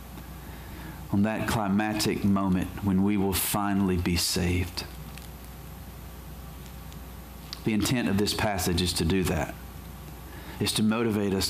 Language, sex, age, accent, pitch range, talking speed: English, male, 40-59, American, 85-135 Hz, 120 wpm